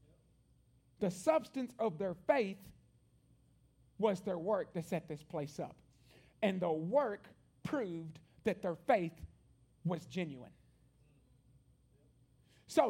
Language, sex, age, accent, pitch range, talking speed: English, male, 50-69, American, 185-260 Hz, 105 wpm